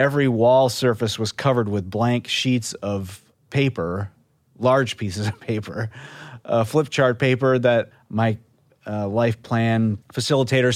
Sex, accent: male, American